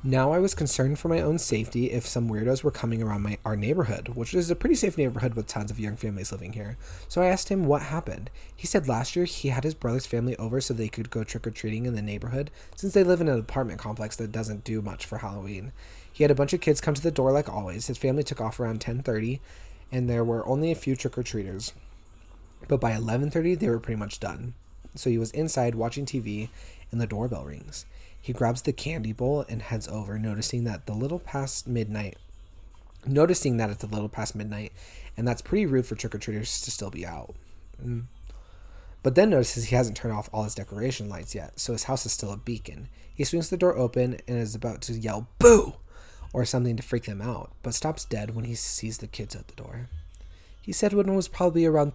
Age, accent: 20-39, American